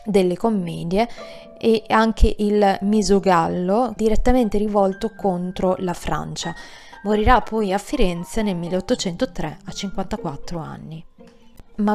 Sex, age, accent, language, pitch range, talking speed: female, 20-39, native, Italian, 180-215 Hz, 105 wpm